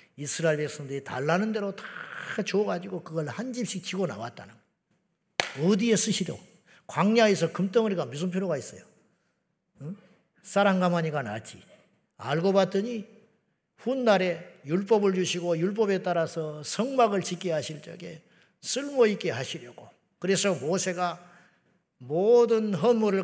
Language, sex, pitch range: Korean, male, 165-210 Hz